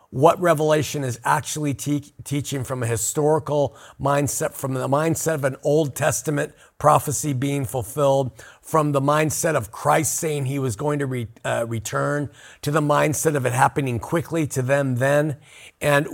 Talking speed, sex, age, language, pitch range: 165 wpm, male, 50-69, English, 120-150 Hz